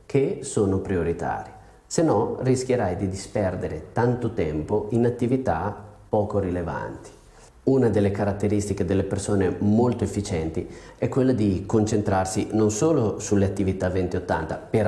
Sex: male